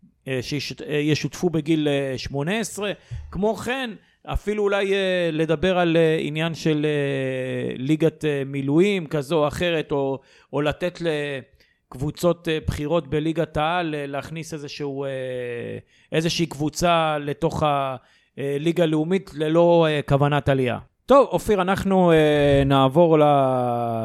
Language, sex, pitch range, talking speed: Hebrew, male, 135-165 Hz, 90 wpm